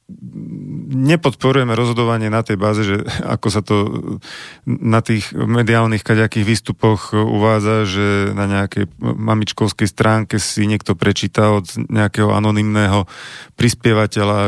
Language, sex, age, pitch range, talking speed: Slovak, male, 40-59, 105-120 Hz, 110 wpm